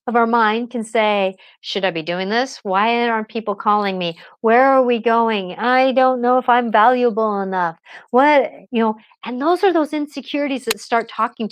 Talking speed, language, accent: 195 wpm, English, American